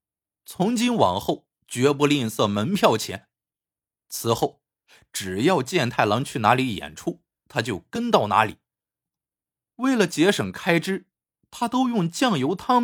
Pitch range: 110-185 Hz